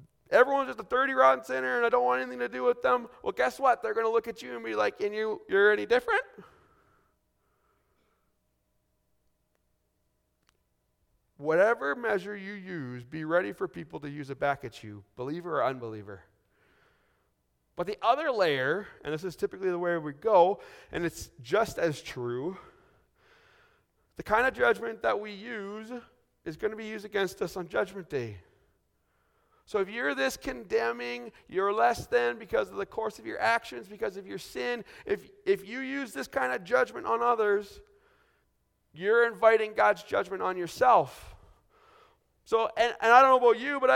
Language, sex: English, male